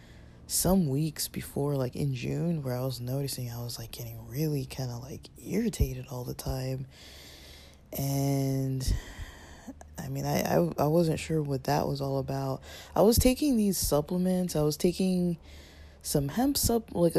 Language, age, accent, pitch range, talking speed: English, 20-39, American, 125-165 Hz, 165 wpm